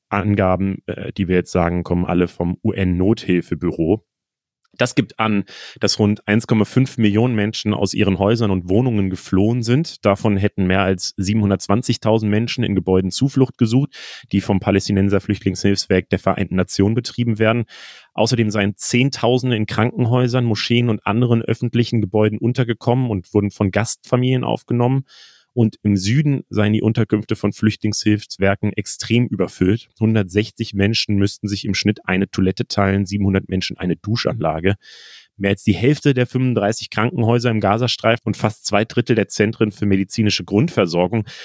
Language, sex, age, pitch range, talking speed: German, male, 30-49, 100-120 Hz, 145 wpm